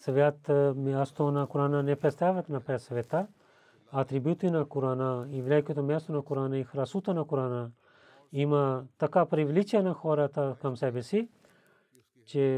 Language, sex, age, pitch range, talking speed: Bulgarian, male, 40-59, 130-160 Hz, 140 wpm